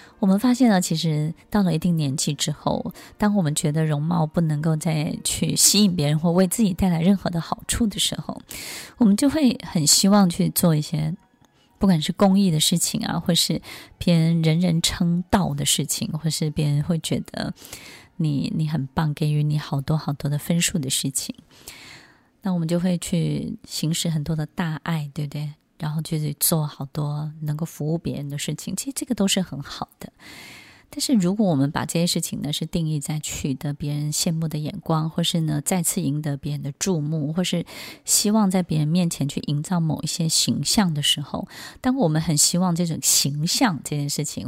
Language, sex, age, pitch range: Chinese, female, 20-39, 150-185 Hz